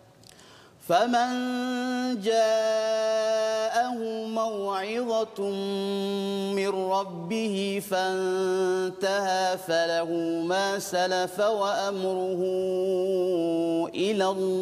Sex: male